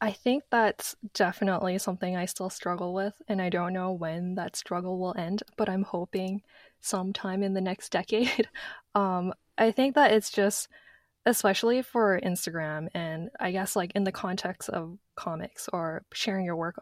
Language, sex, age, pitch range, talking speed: English, female, 10-29, 175-200 Hz, 170 wpm